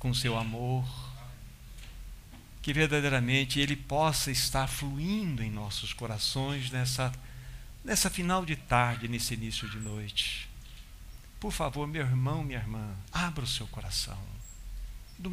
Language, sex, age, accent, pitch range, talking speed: Portuguese, male, 60-79, Brazilian, 115-150 Hz, 125 wpm